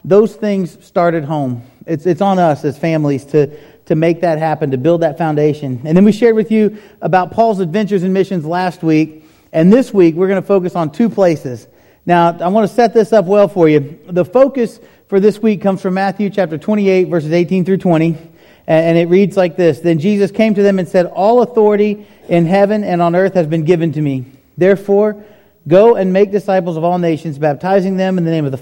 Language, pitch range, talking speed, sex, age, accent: English, 155-205 Hz, 220 wpm, male, 40-59, American